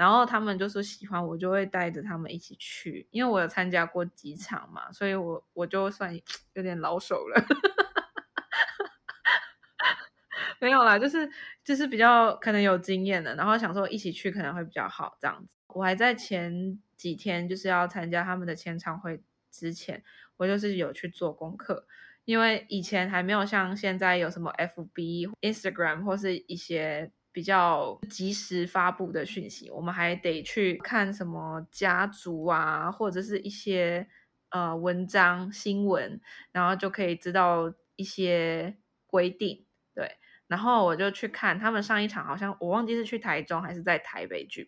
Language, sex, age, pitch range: Chinese, female, 20-39, 175-210 Hz